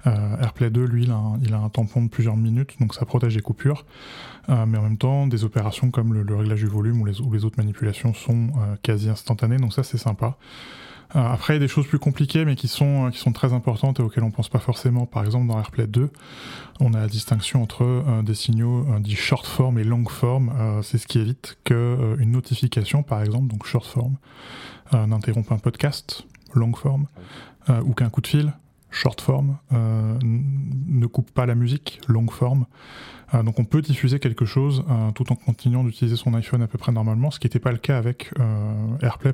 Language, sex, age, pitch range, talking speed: French, male, 10-29, 115-130 Hz, 205 wpm